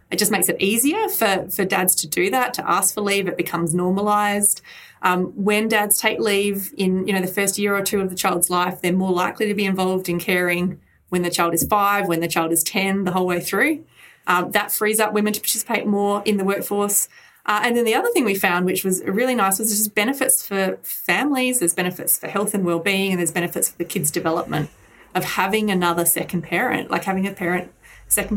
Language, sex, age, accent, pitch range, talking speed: English, female, 20-39, Australian, 175-205 Hz, 225 wpm